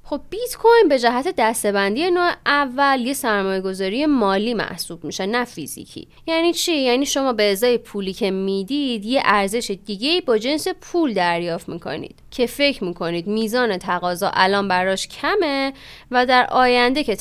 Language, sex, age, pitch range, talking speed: Persian, female, 20-39, 200-305 Hz, 155 wpm